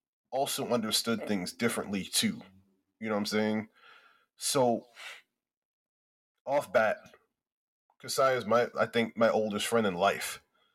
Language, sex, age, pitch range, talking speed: English, male, 20-39, 105-140 Hz, 130 wpm